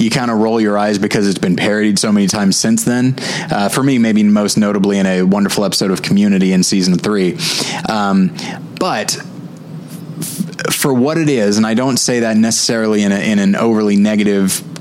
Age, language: 20-39, English